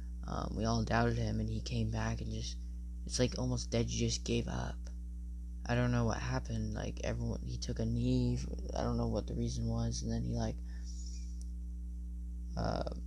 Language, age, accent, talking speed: English, 20-39, American, 200 wpm